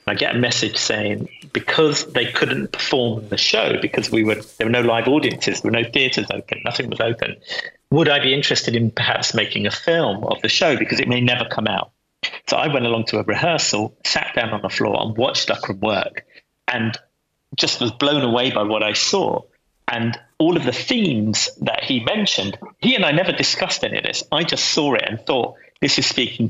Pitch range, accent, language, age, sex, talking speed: 110-130 Hz, British, English, 40-59, male, 215 wpm